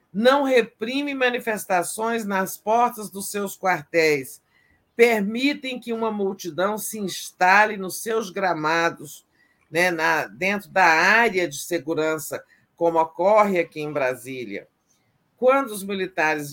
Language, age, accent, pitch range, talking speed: Portuguese, 50-69, Brazilian, 155-200 Hz, 115 wpm